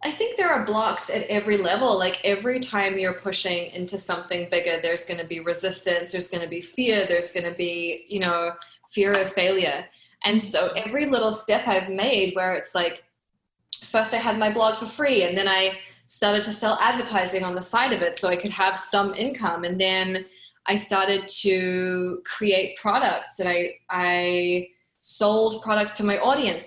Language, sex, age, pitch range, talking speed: English, female, 20-39, 180-210 Hz, 190 wpm